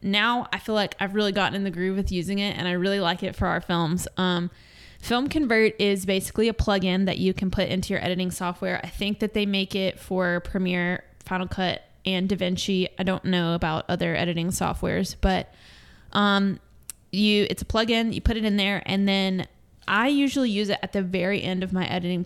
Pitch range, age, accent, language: 185-205 Hz, 20-39, American, English